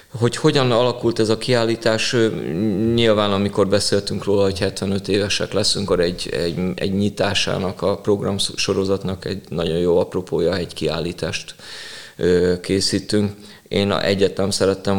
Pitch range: 90-105 Hz